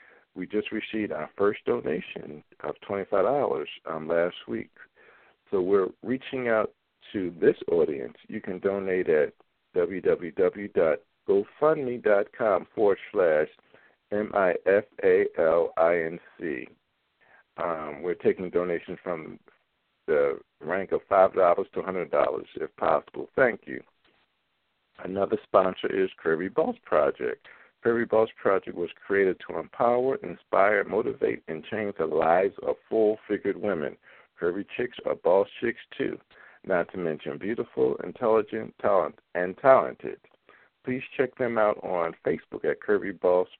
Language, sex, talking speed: English, male, 115 wpm